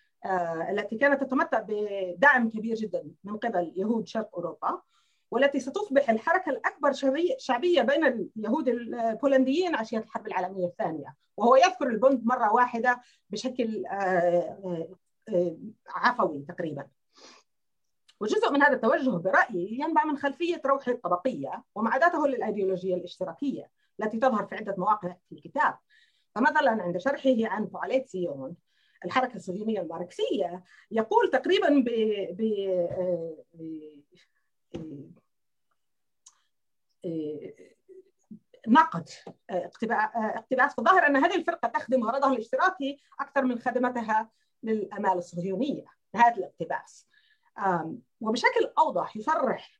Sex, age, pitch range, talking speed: female, 40-59, 185-275 Hz, 100 wpm